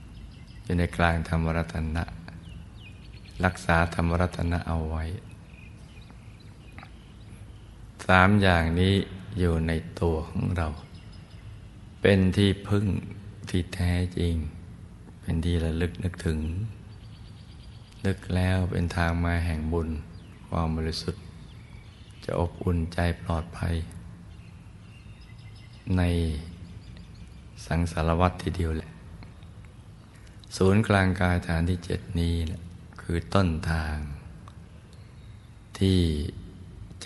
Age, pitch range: 60-79, 85-100 Hz